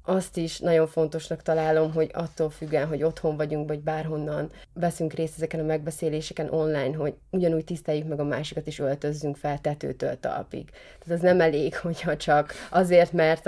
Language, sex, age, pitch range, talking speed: Hungarian, female, 30-49, 155-170 Hz, 170 wpm